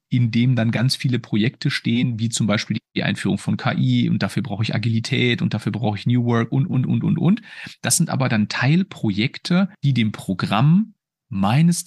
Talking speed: 195 wpm